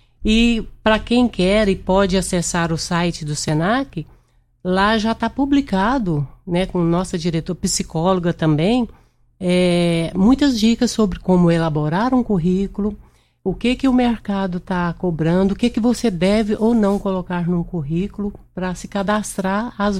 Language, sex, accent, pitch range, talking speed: Portuguese, female, Brazilian, 180-220 Hz, 150 wpm